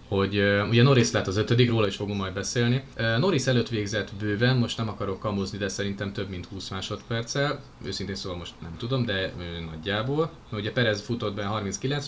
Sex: male